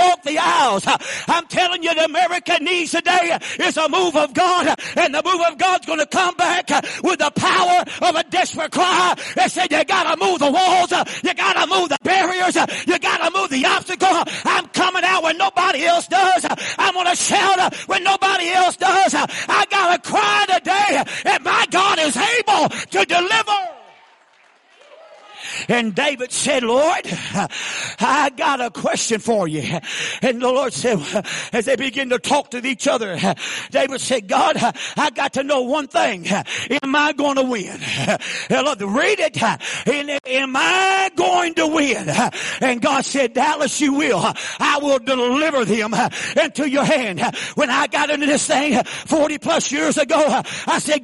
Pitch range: 275-360 Hz